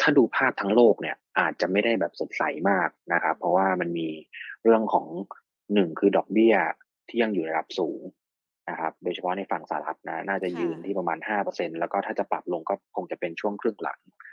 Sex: male